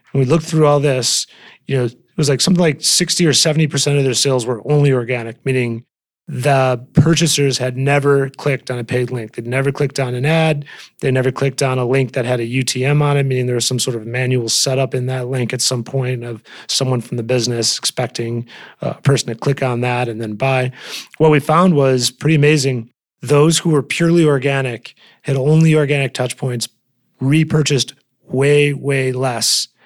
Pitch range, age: 120-140 Hz, 30-49